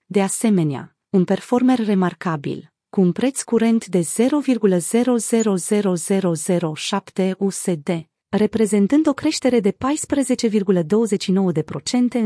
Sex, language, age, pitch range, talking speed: female, Romanian, 30-49, 180-230 Hz, 85 wpm